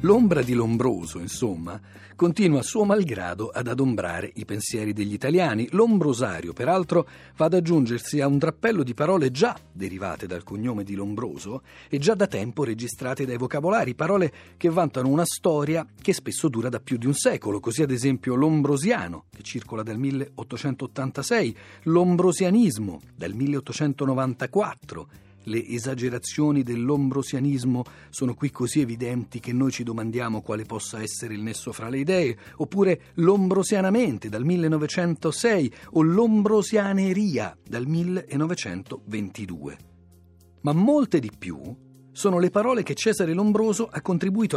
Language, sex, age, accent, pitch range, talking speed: Italian, male, 40-59, native, 115-175 Hz, 135 wpm